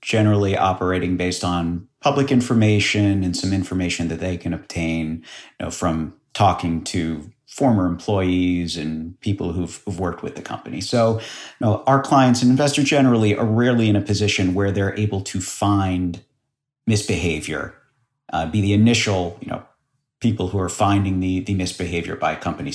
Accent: American